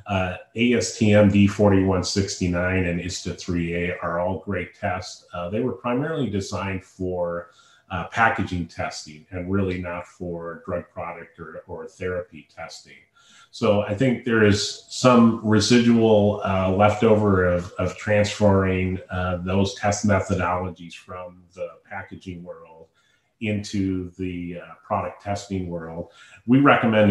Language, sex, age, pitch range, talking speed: English, male, 30-49, 90-105 Hz, 125 wpm